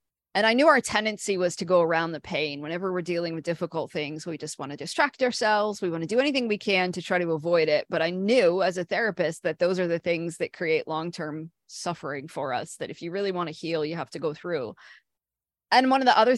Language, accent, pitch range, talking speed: English, American, 170-210 Hz, 255 wpm